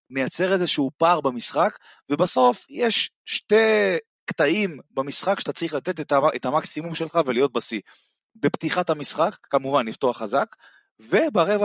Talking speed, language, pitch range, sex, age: 130 wpm, Hebrew, 130-185 Hz, male, 30-49